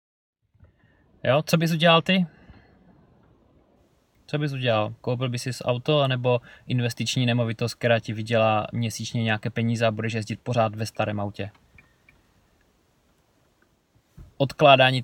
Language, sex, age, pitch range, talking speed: Czech, male, 20-39, 115-135 Hz, 120 wpm